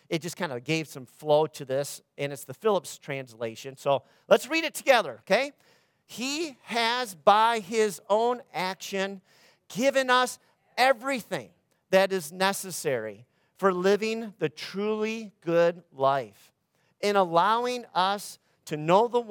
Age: 50-69